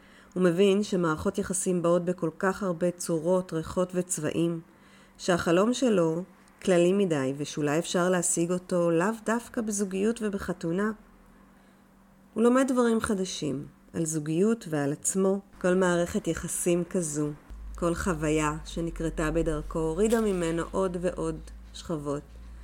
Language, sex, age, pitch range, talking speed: Hebrew, female, 30-49, 160-195 Hz, 115 wpm